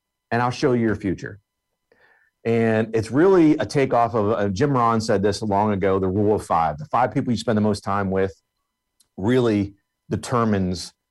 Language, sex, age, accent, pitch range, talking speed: English, male, 50-69, American, 105-125 Hz, 185 wpm